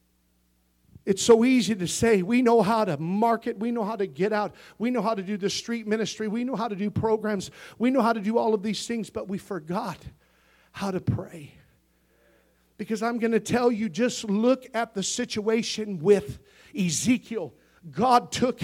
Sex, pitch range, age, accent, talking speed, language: male, 180-235 Hz, 50-69, American, 195 wpm, English